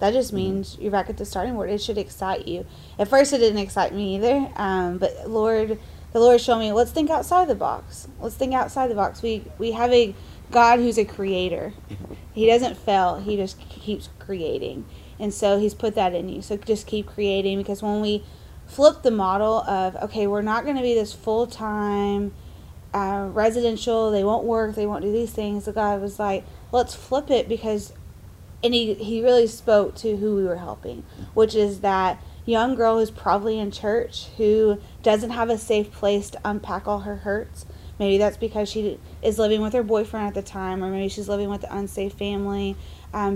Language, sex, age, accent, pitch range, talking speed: English, female, 20-39, American, 195-225 Hz, 205 wpm